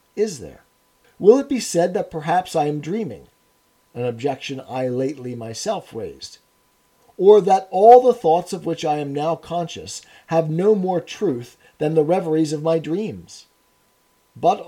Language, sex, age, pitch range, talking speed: English, male, 40-59, 150-205 Hz, 160 wpm